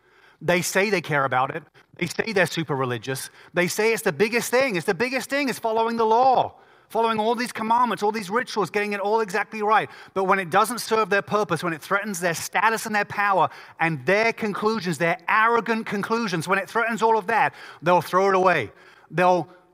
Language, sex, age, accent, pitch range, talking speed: English, male, 30-49, British, 140-205 Hz, 210 wpm